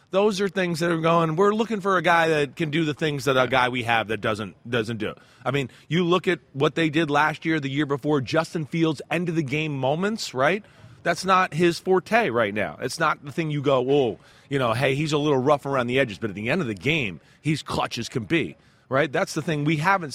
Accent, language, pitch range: American, English, 140-180 Hz